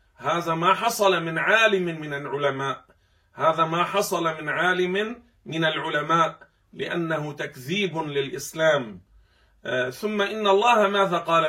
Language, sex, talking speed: Arabic, male, 115 wpm